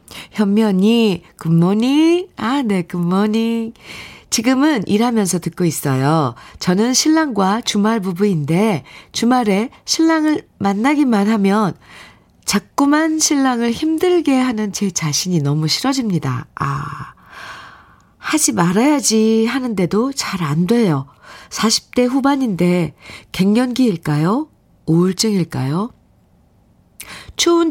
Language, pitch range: Korean, 155-230 Hz